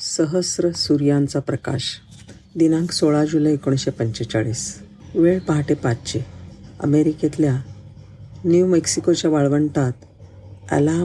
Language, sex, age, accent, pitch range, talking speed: Marathi, female, 50-69, native, 120-155 Hz, 85 wpm